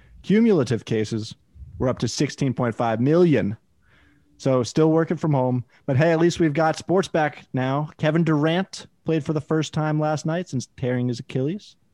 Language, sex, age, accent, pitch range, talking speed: English, male, 30-49, American, 115-145 Hz, 170 wpm